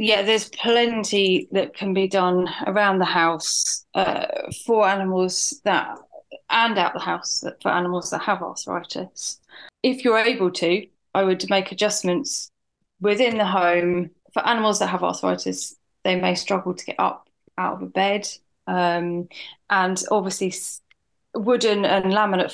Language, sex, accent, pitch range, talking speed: English, female, British, 175-205 Hz, 145 wpm